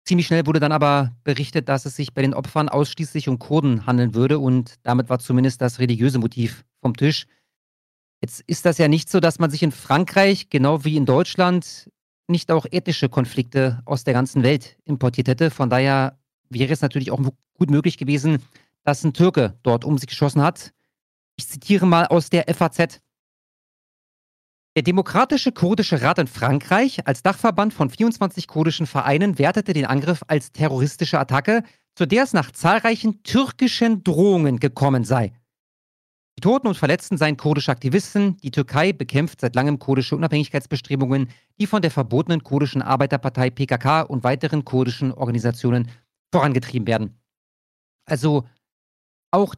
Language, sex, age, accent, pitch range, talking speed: German, male, 40-59, German, 130-165 Hz, 155 wpm